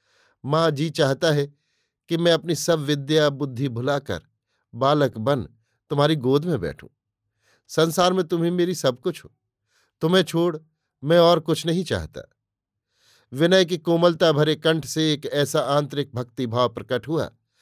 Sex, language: male, Hindi